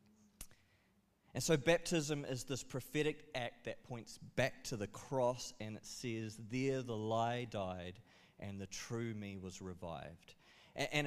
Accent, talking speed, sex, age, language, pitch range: Australian, 145 wpm, male, 30-49, English, 100-130 Hz